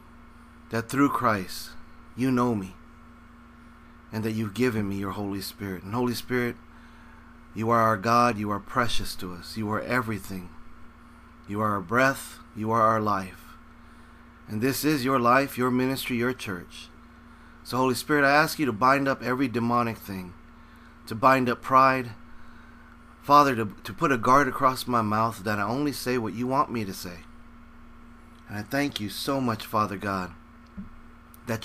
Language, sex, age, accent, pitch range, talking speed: English, male, 40-59, American, 80-125 Hz, 170 wpm